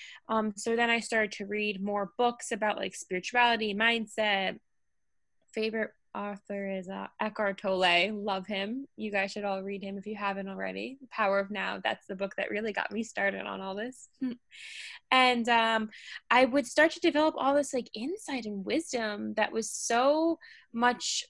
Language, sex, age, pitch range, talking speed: English, female, 10-29, 210-270 Hz, 175 wpm